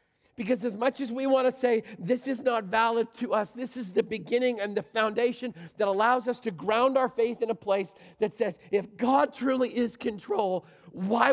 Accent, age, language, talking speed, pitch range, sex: American, 40-59, English, 205 wpm, 210-255 Hz, male